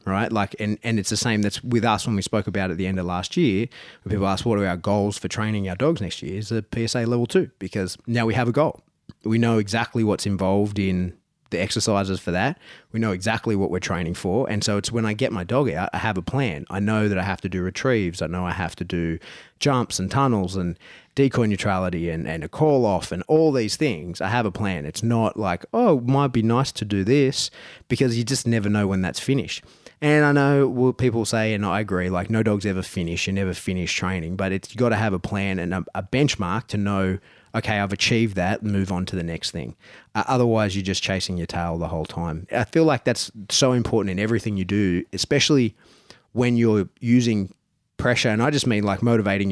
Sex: male